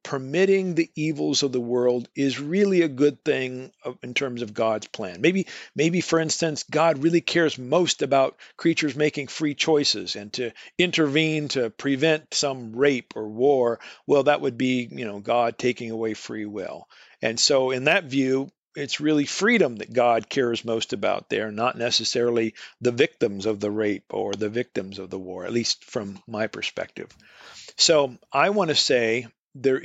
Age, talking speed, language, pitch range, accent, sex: 50-69, 175 wpm, English, 120-155 Hz, American, male